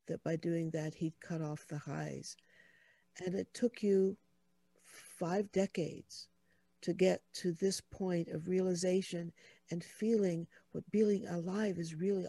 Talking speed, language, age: 140 wpm, English, 60-79